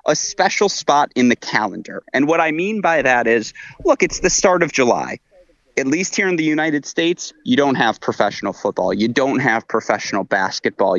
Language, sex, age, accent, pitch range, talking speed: English, male, 30-49, American, 125-180 Hz, 195 wpm